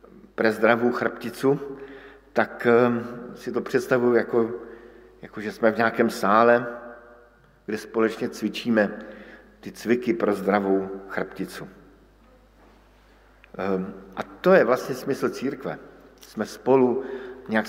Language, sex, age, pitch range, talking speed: Slovak, male, 50-69, 105-130 Hz, 105 wpm